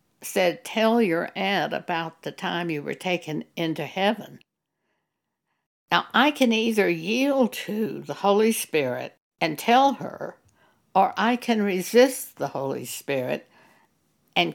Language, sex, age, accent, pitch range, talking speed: English, female, 60-79, American, 170-230 Hz, 130 wpm